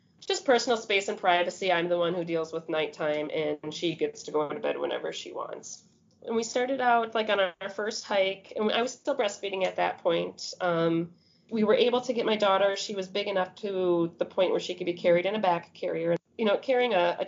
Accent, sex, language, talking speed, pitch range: American, female, English, 235 wpm, 170-215 Hz